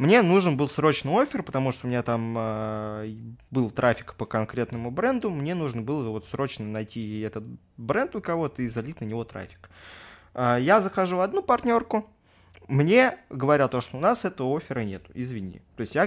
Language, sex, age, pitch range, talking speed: Russian, male, 20-39, 115-150 Hz, 185 wpm